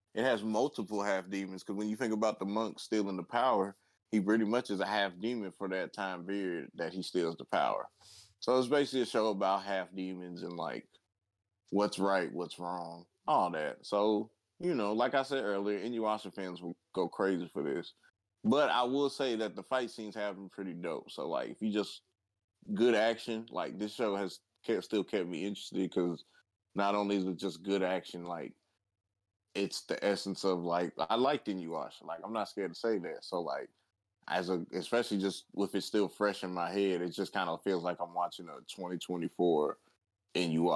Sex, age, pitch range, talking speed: male, 20-39, 95-110 Hz, 195 wpm